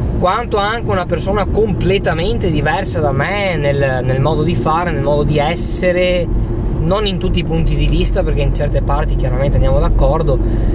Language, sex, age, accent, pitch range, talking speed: Italian, male, 20-39, native, 120-175 Hz, 175 wpm